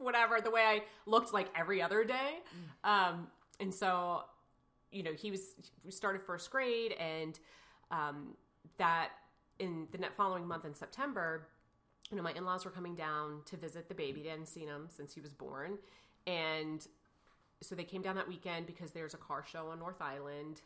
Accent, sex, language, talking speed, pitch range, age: American, female, English, 190 wpm, 150-190 Hz, 30-49